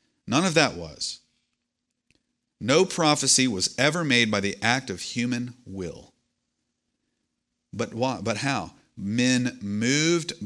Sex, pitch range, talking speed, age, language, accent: male, 100-125 Hz, 120 wpm, 40-59, English, American